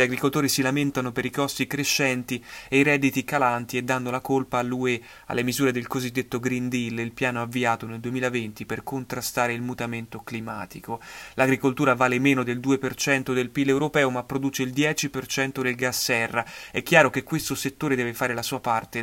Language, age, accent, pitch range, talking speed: Italian, 30-49, native, 125-140 Hz, 185 wpm